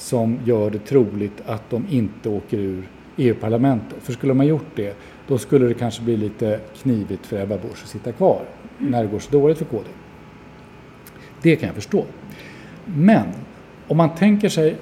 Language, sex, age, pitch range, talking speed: Swedish, male, 50-69, 115-150 Hz, 180 wpm